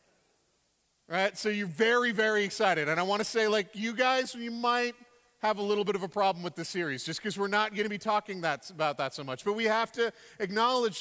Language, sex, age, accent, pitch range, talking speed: English, male, 40-59, American, 175-220 Hz, 240 wpm